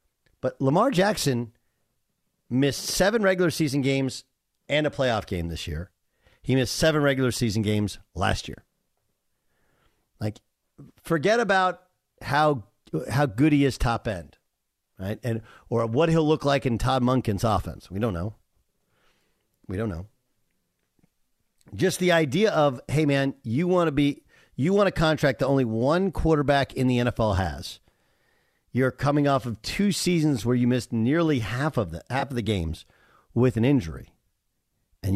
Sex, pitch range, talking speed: male, 100-150 Hz, 155 wpm